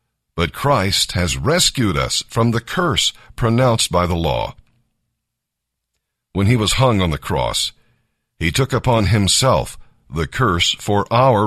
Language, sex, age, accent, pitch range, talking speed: English, male, 50-69, American, 95-125 Hz, 140 wpm